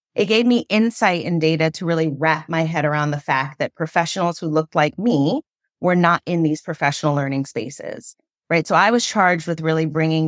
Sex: female